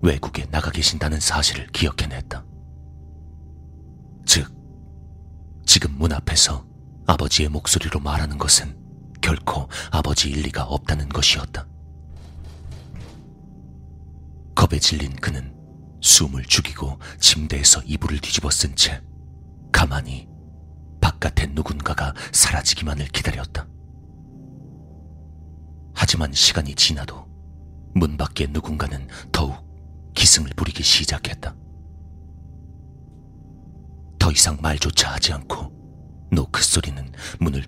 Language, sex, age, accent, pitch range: Korean, male, 40-59, native, 70-80 Hz